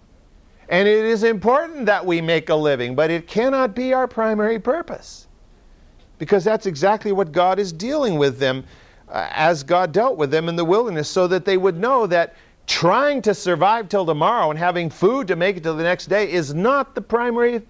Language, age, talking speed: English, 50-69, 200 wpm